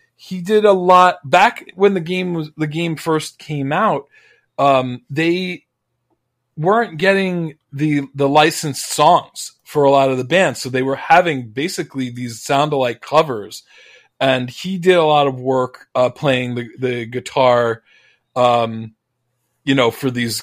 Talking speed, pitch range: 155 wpm, 115-150 Hz